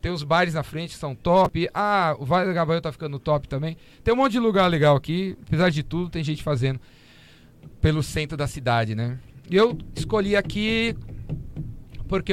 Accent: Brazilian